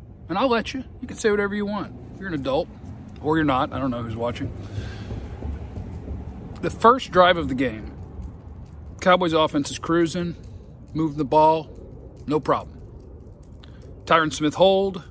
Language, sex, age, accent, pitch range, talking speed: English, male, 40-59, American, 105-155 Hz, 155 wpm